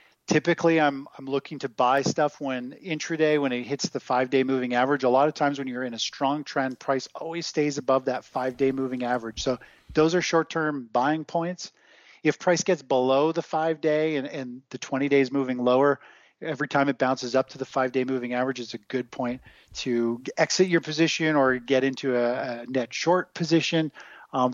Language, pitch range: English, 130-155 Hz